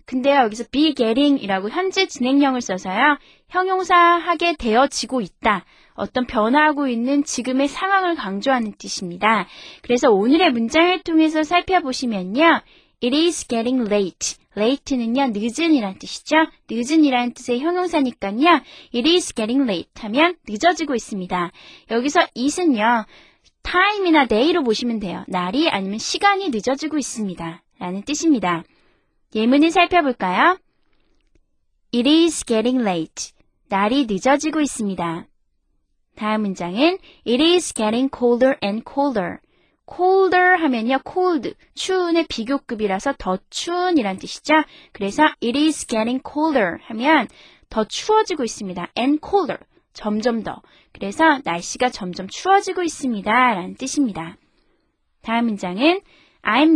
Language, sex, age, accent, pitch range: Korean, female, 20-39, native, 220-320 Hz